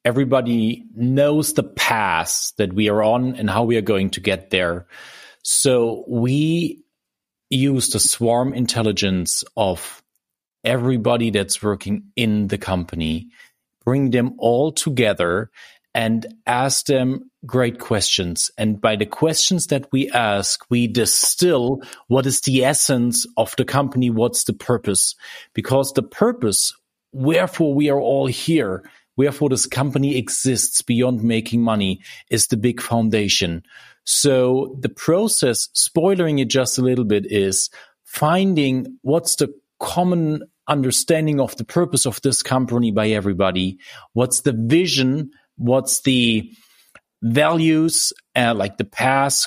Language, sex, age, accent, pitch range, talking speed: German, male, 40-59, German, 115-140 Hz, 130 wpm